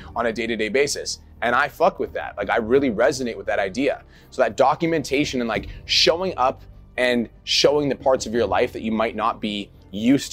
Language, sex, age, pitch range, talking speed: English, male, 30-49, 115-160 Hz, 210 wpm